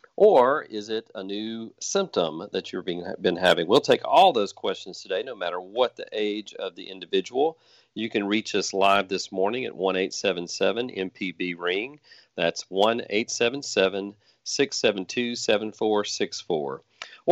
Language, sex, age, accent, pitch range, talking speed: English, male, 40-59, American, 95-125 Hz, 125 wpm